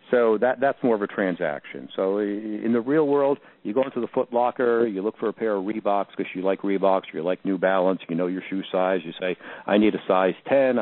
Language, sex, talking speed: English, male, 245 wpm